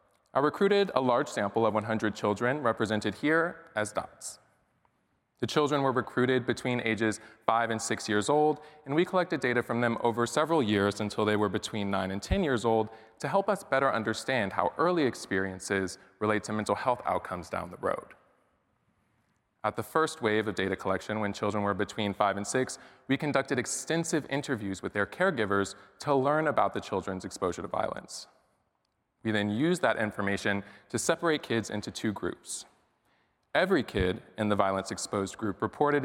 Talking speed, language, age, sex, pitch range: 175 wpm, English, 20-39, male, 105-135 Hz